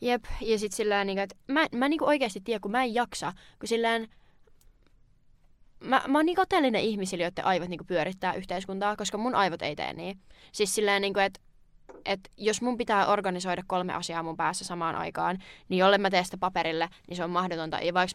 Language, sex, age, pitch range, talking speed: Finnish, female, 20-39, 180-220 Hz, 200 wpm